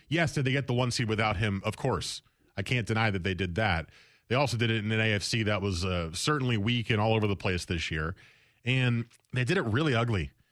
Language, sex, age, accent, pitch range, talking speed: English, male, 30-49, American, 105-130 Hz, 245 wpm